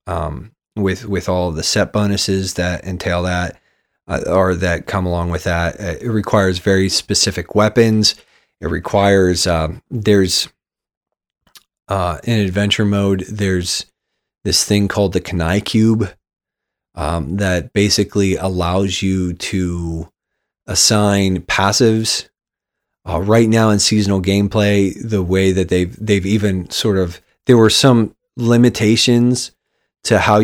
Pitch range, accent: 90-105 Hz, American